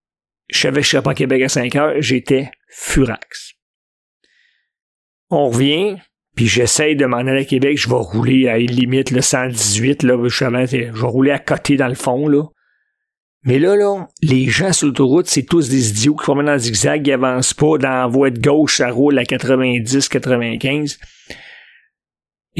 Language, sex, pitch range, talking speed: French, male, 130-155 Hz, 175 wpm